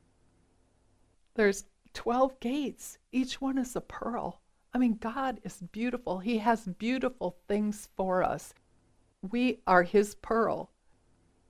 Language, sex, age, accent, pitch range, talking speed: English, female, 50-69, American, 165-225 Hz, 120 wpm